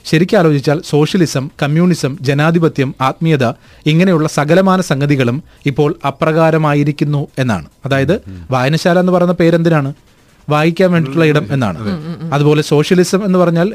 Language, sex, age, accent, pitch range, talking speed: Malayalam, male, 30-49, native, 140-170 Hz, 105 wpm